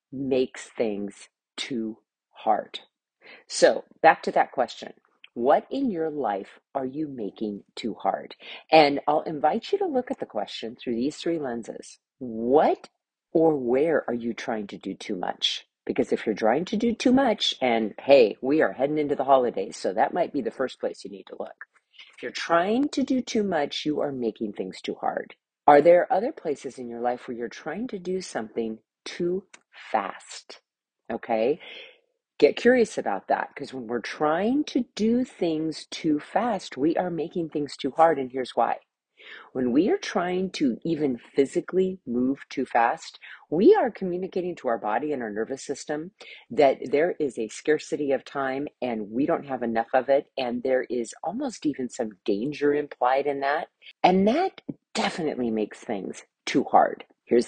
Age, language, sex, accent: 40-59, English, female, American